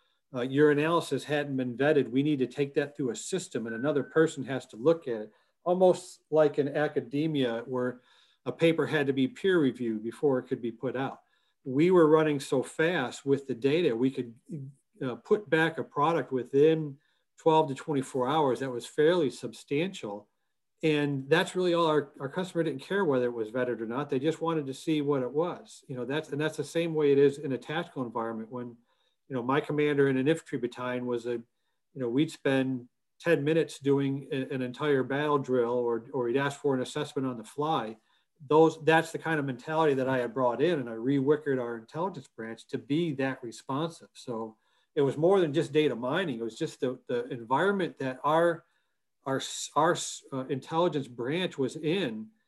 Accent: American